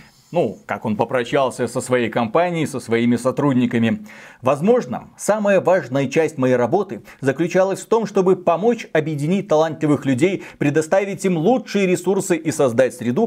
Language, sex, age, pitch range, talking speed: Russian, male, 30-49, 140-190 Hz, 140 wpm